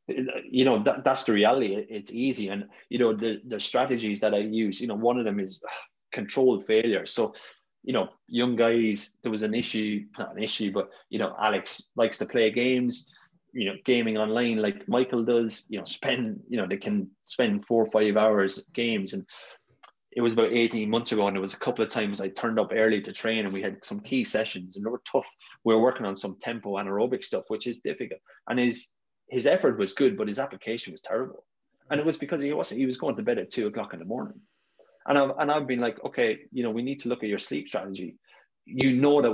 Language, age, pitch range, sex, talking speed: English, 20-39, 105-130 Hz, male, 230 wpm